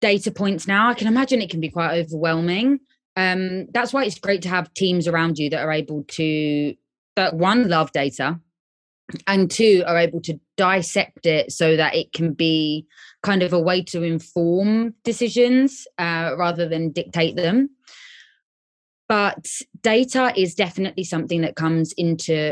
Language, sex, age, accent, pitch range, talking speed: Spanish, female, 20-39, British, 165-205 Hz, 165 wpm